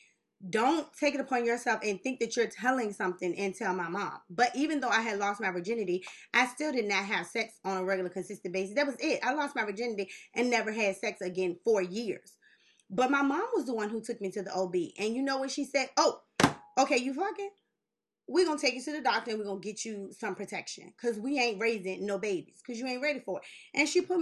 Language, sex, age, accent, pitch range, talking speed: English, female, 20-39, American, 210-280 Hz, 250 wpm